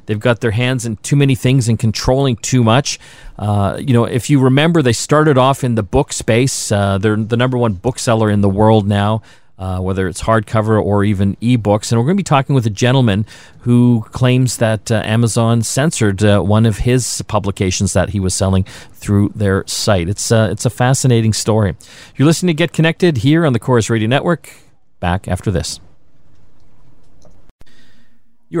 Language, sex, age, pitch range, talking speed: English, male, 40-59, 105-130 Hz, 190 wpm